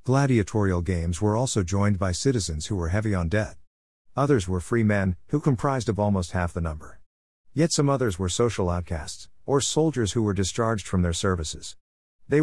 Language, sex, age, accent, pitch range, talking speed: English, male, 50-69, American, 90-120 Hz, 185 wpm